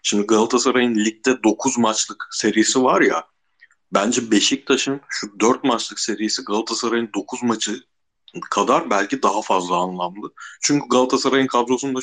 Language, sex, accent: Turkish, male, native